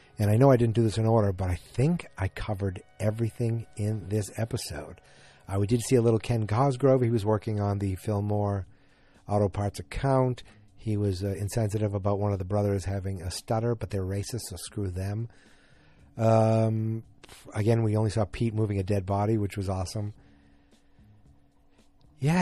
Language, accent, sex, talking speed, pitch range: English, American, male, 180 wpm, 100-120 Hz